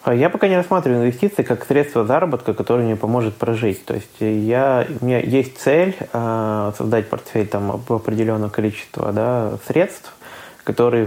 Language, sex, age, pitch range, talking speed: Russian, male, 20-39, 105-125 Hz, 145 wpm